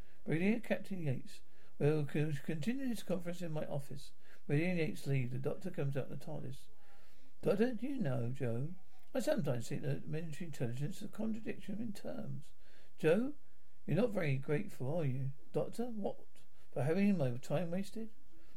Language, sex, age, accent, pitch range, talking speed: English, male, 60-79, British, 135-195 Hz, 165 wpm